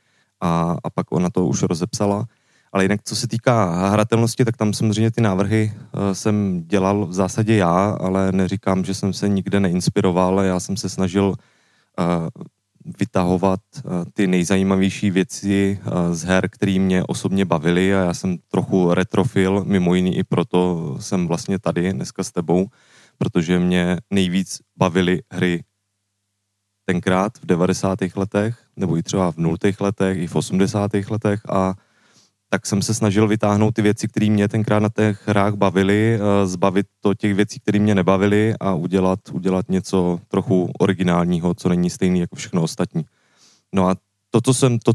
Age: 20-39